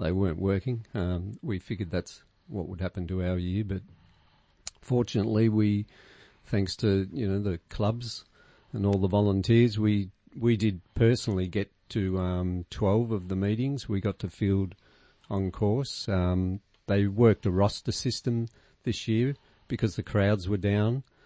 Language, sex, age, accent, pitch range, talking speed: English, male, 50-69, Australian, 90-110 Hz, 160 wpm